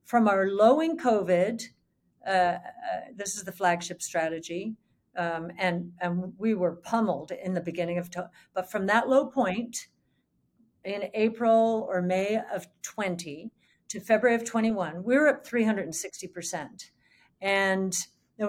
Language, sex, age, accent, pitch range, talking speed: English, female, 50-69, American, 180-225 Hz, 140 wpm